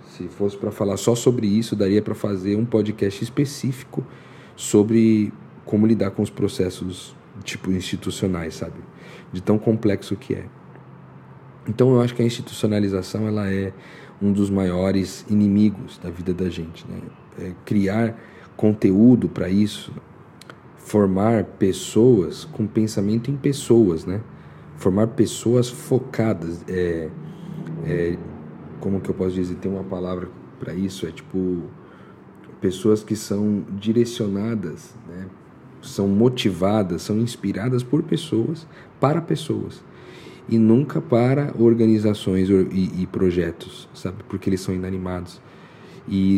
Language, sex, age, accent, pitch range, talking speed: Portuguese, male, 40-59, Brazilian, 95-110 Hz, 130 wpm